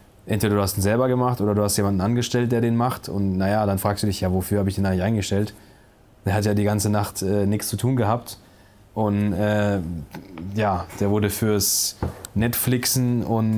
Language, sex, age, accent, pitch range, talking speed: German, male, 20-39, German, 100-115 Hz, 205 wpm